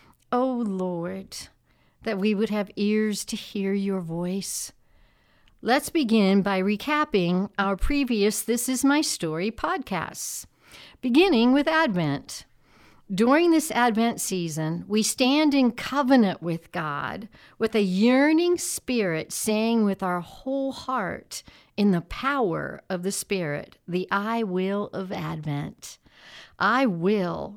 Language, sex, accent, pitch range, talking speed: English, female, American, 185-240 Hz, 125 wpm